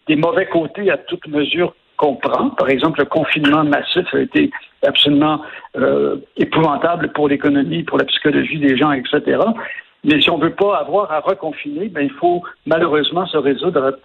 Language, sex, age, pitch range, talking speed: French, male, 60-79, 150-190 Hz, 175 wpm